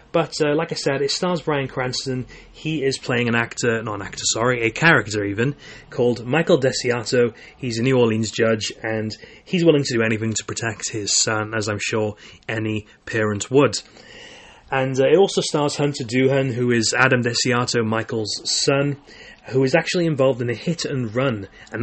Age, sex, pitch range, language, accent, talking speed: 30-49, male, 110-135 Hz, English, British, 185 wpm